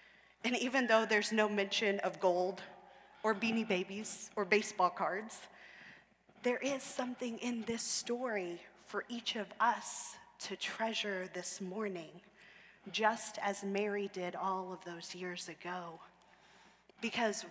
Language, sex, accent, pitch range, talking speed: English, female, American, 195-250 Hz, 130 wpm